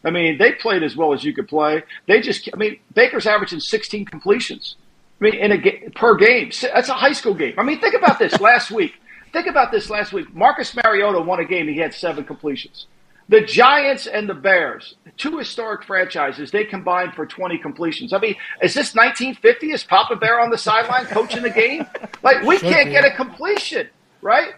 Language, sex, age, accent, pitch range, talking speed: English, male, 50-69, American, 195-285 Hz, 205 wpm